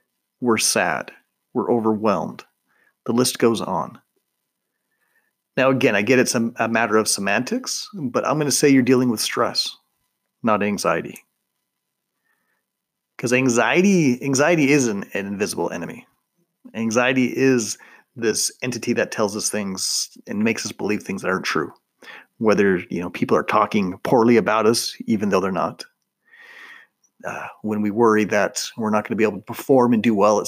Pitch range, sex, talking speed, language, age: 110-150 Hz, male, 160 wpm, English, 40-59